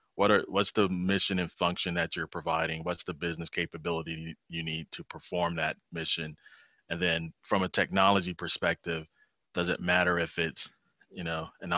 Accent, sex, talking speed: American, male, 175 wpm